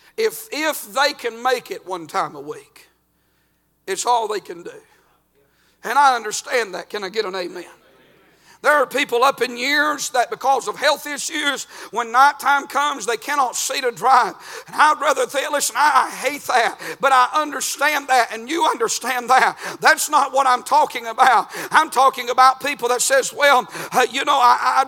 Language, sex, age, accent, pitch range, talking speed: English, male, 50-69, American, 250-300 Hz, 185 wpm